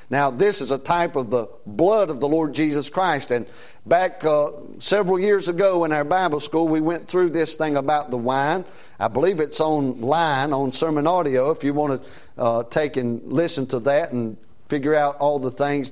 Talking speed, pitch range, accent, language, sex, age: 205 wpm, 135-170 Hz, American, English, male, 50-69